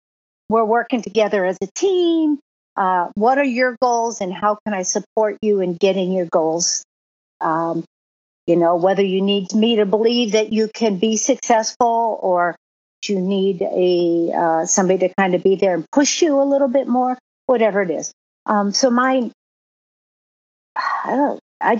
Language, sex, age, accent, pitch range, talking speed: English, female, 50-69, American, 185-225 Hz, 170 wpm